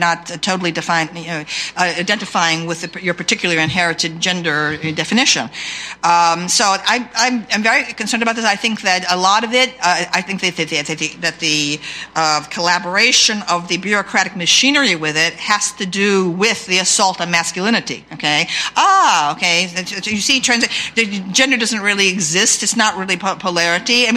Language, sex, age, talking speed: English, female, 50-69, 180 wpm